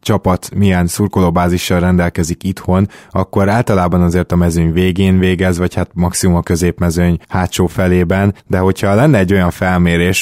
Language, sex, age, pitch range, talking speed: Hungarian, male, 20-39, 90-100 Hz, 145 wpm